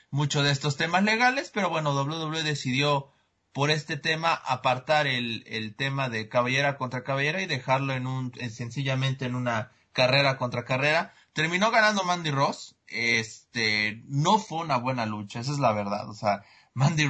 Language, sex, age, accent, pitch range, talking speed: Spanish, male, 30-49, Mexican, 125-155 Hz, 170 wpm